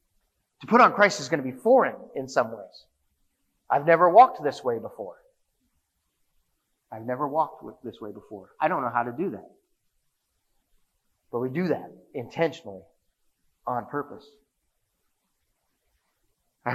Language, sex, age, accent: English, male, 30-49, American